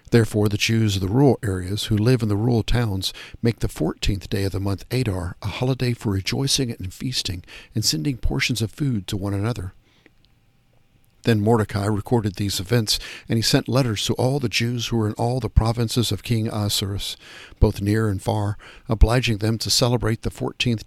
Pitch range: 100-120 Hz